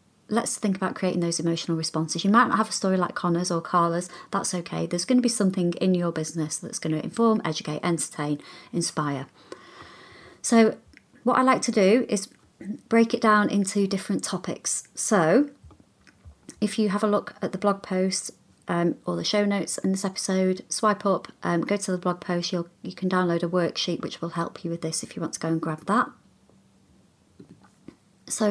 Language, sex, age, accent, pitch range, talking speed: English, female, 30-49, British, 170-205 Hz, 200 wpm